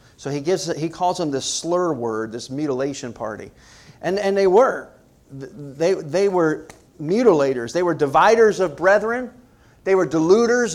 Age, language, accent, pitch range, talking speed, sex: 40-59, English, American, 135-200 Hz, 155 wpm, male